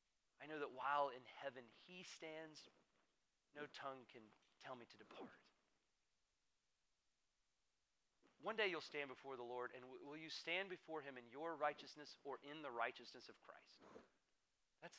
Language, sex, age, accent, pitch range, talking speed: English, male, 40-59, American, 130-190 Hz, 150 wpm